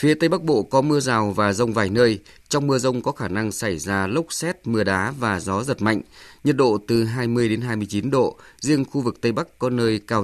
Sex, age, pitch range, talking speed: male, 20-39, 105-130 Hz, 245 wpm